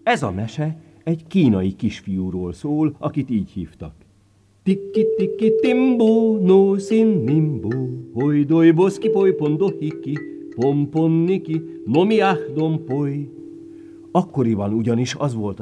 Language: Hungarian